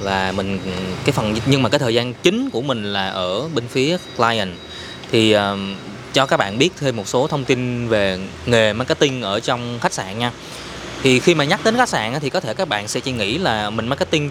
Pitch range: 110-150 Hz